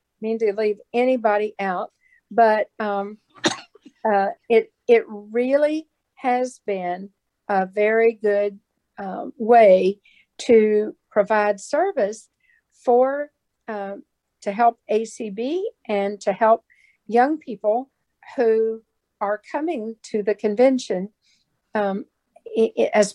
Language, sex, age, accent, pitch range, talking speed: English, female, 50-69, American, 210-260 Hz, 100 wpm